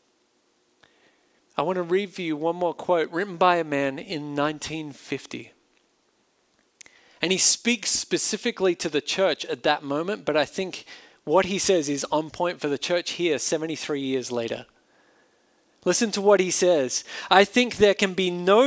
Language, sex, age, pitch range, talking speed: English, male, 40-59, 150-210 Hz, 165 wpm